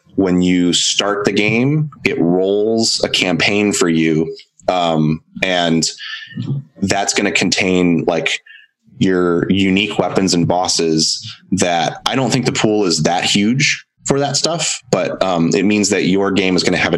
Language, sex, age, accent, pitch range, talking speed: English, male, 20-39, American, 85-115 Hz, 165 wpm